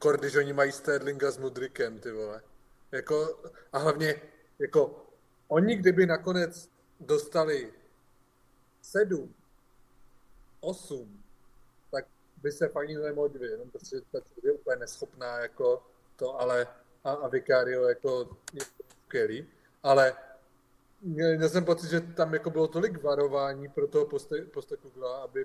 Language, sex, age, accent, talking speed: Czech, male, 40-59, native, 130 wpm